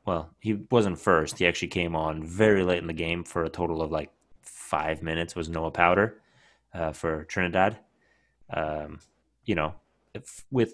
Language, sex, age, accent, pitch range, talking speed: English, male, 30-49, American, 80-100 Hz, 170 wpm